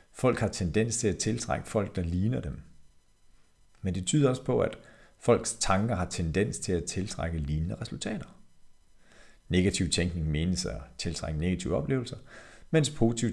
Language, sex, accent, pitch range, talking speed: Danish, male, native, 85-115 Hz, 155 wpm